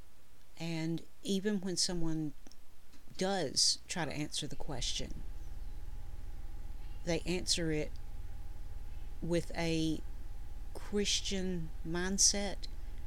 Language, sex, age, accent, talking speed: English, female, 50-69, American, 80 wpm